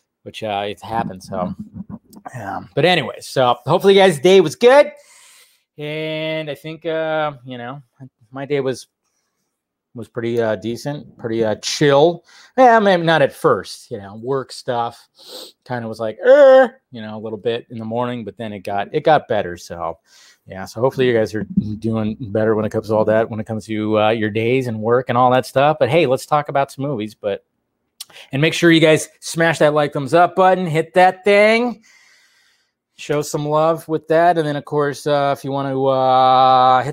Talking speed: 210 wpm